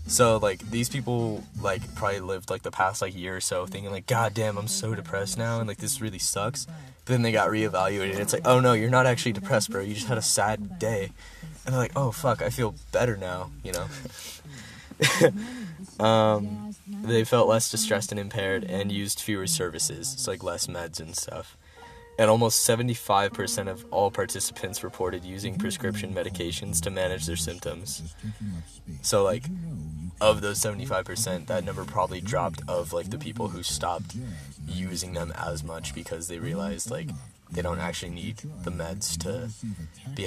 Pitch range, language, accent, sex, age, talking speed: 90-115 Hz, English, American, male, 20-39, 180 wpm